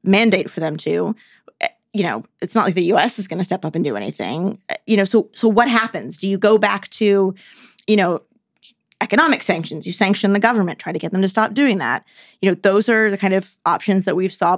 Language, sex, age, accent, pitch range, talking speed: English, female, 20-39, American, 185-225 Hz, 235 wpm